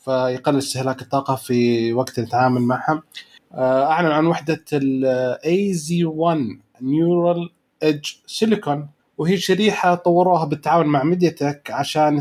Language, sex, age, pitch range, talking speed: Arabic, male, 30-49, 130-160 Hz, 110 wpm